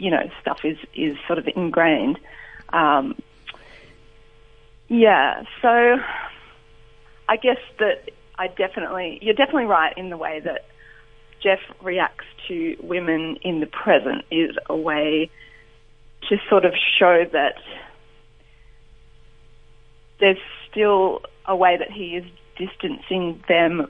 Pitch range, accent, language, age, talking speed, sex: 155-200 Hz, Australian, English, 30-49, 120 wpm, female